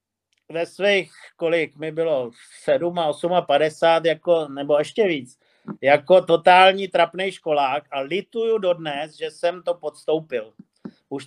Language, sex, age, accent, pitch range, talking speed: Czech, male, 50-69, native, 145-175 Hz, 130 wpm